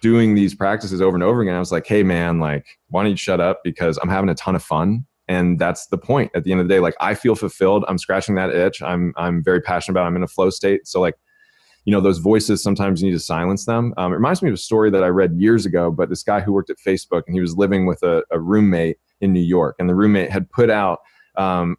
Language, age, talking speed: English, 20-39, 280 wpm